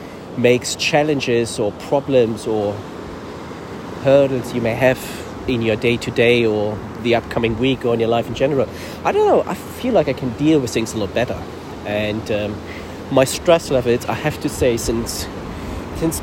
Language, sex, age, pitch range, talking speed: English, male, 30-49, 90-130 Hz, 175 wpm